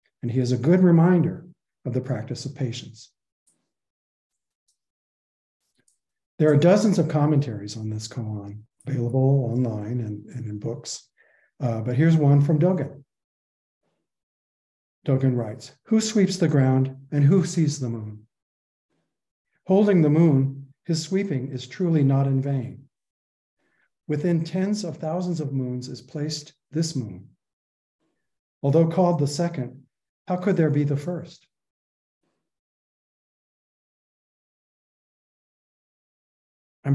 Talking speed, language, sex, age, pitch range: 120 wpm, English, male, 50-69, 120-155 Hz